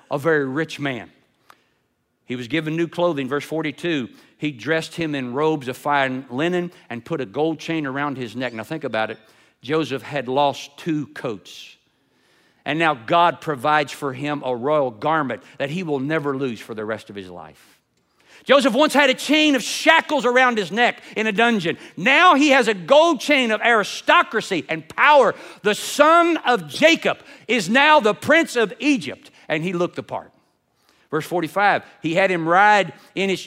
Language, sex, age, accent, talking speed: English, male, 50-69, American, 180 wpm